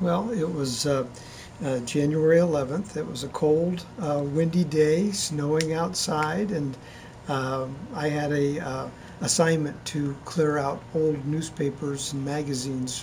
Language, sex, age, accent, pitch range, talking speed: English, male, 50-69, American, 140-170 Hz, 140 wpm